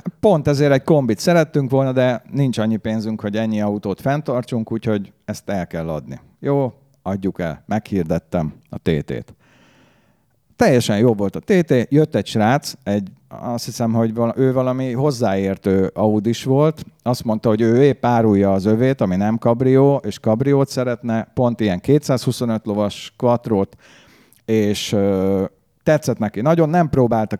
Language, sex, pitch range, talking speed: Hungarian, male, 100-130 Hz, 145 wpm